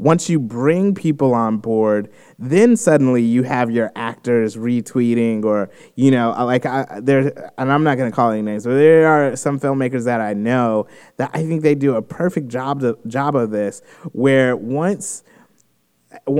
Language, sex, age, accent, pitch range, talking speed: English, male, 20-39, American, 120-150 Hz, 170 wpm